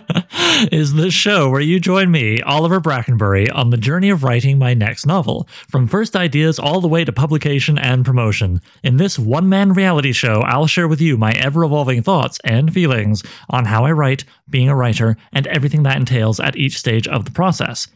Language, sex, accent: English, male, American